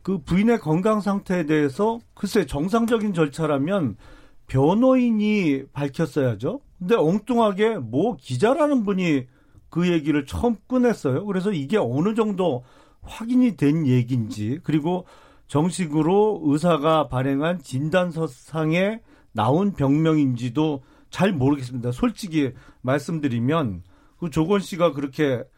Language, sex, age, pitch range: Korean, male, 40-59, 125-180 Hz